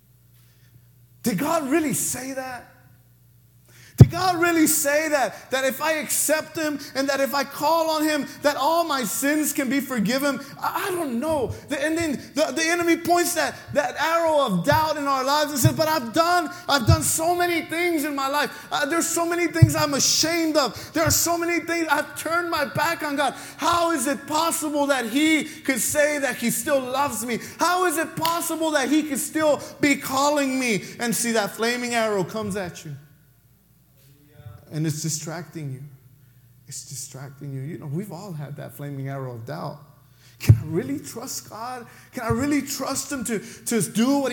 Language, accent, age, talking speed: English, American, 30-49, 190 wpm